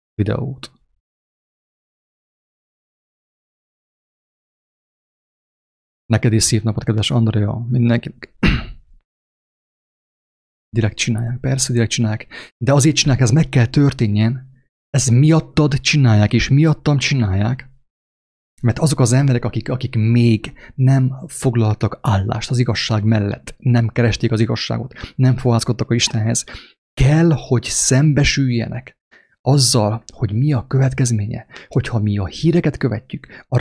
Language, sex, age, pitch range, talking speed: English, male, 30-49, 110-140 Hz, 105 wpm